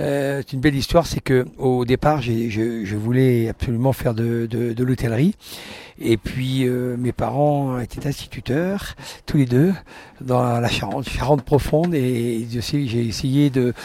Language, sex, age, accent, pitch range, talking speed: French, male, 60-79, French, 115-150 Hz, 160 wpm